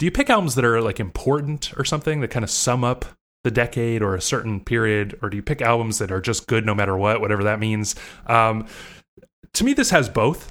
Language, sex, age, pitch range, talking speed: English, male, 20-39, 105-140 Hz, 240 wpm